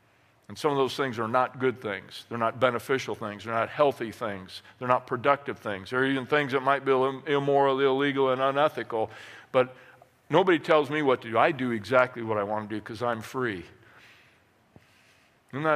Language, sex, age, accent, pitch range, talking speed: English, male, 50-69, American, 115-155 Hz, 190 wpm